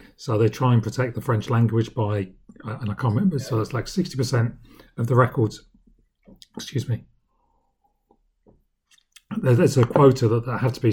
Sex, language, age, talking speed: male, English, 40-59, 160 wpm